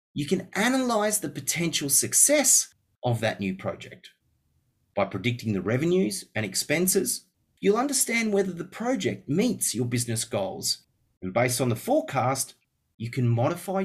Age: 30-49